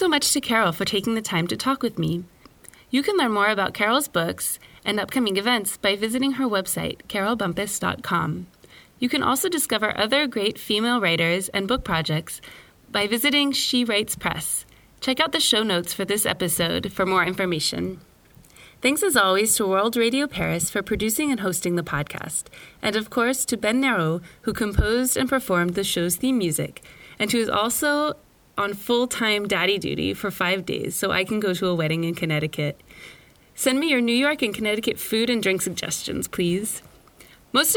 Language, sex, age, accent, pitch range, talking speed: English, female, 30-49, American, 185-250 Hz, 180 wpm